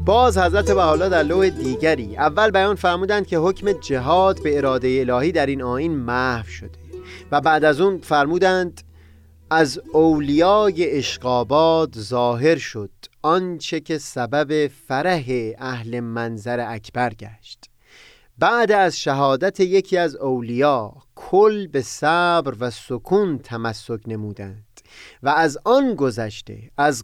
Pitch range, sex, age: 125-170 Hz, male, 30-49